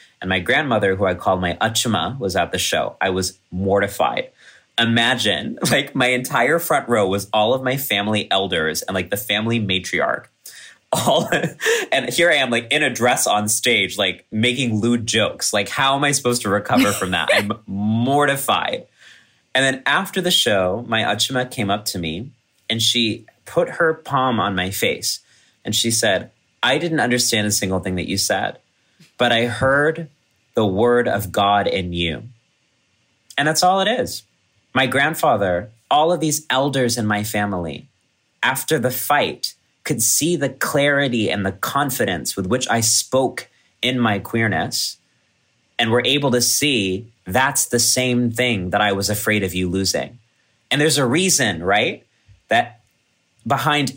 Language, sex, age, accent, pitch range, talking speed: English, male, 30-49, American, 105-130 Hz, 170 wpm